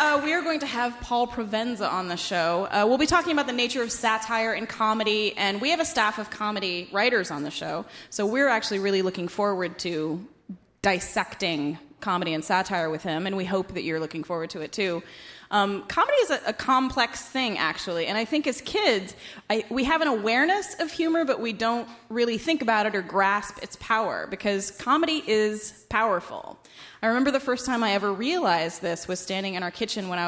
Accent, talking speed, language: American, 210 wpm, English